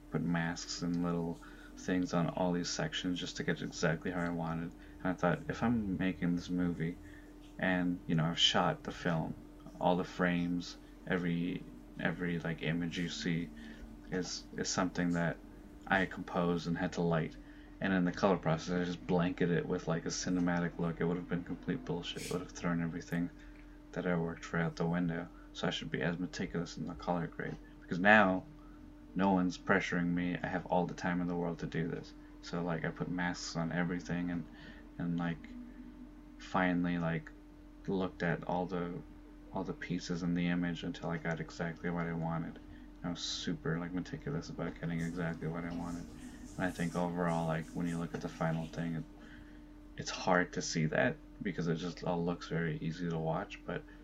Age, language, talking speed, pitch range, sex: 20-39, English, 195 wpm, 85-90 Hz, male